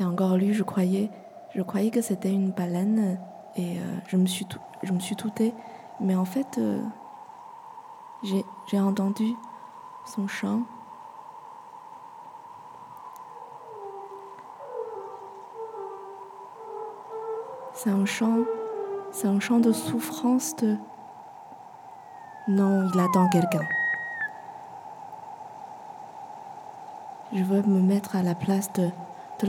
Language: French